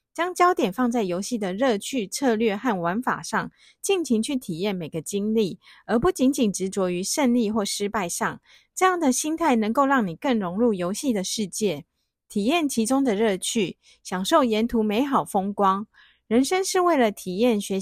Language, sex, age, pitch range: Chinese, female, 30-49, 200-275 Hz